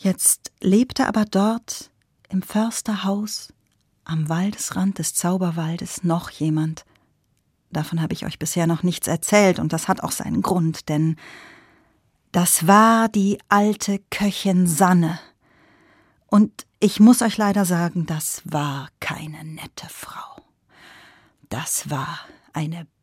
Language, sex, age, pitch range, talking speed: German, female, 40-59, 160-215 Hz, 120 wpm